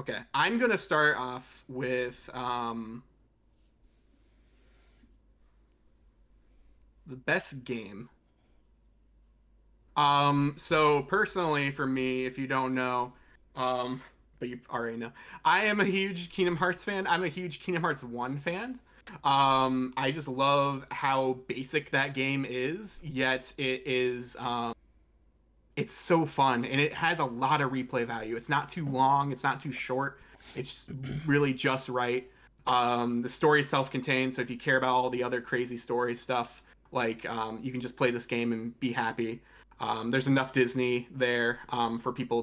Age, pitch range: 20-39, 120-140 Hz